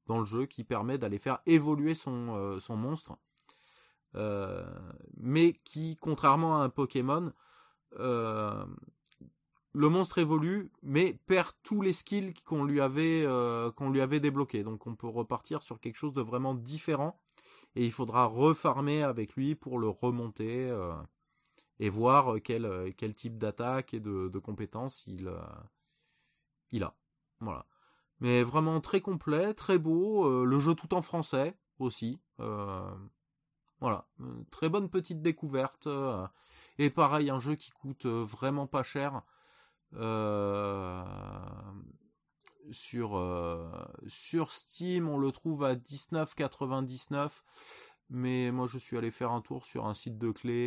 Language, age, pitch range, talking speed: French, 20-39, 110-150 Hz, 145 wpm